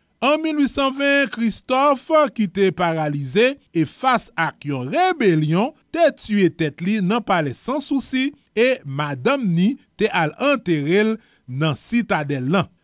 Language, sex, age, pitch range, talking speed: French, male, 30-49, 165-260 Hz, 130 wpm